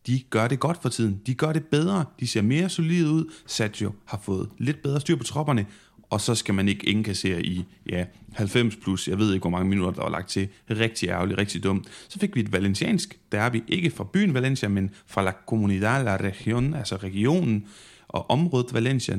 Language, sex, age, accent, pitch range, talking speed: Danish, male, 30-49, native, 100-130 Hz, 220 wpm